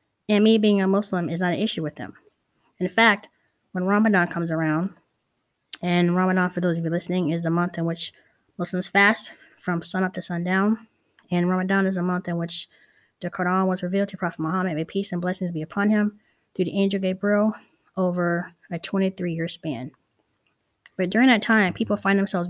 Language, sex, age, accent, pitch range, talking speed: English, female, 20-39, American, 170-205 Hz, 190 wpm